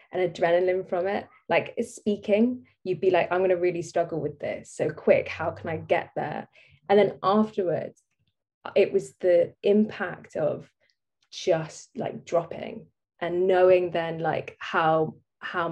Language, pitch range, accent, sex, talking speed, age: English, 165-195 Hz, British, female, 150 wpm, 20-39